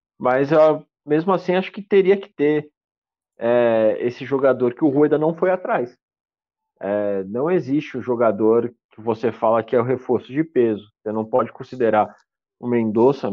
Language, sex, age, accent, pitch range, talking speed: Portuguese, male, 40-59, Brazilian, 115-145 Hz, 165 wpm